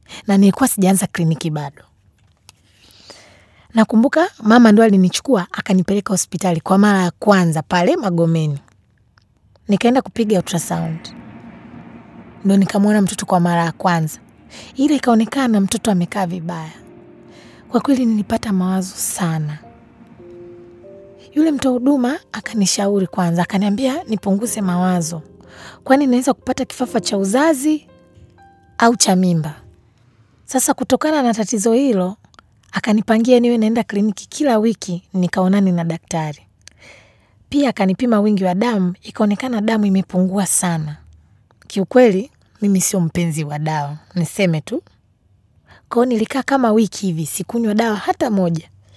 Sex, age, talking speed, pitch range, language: female, 30-49, 115 wpm, 165-230 Hz, Swahili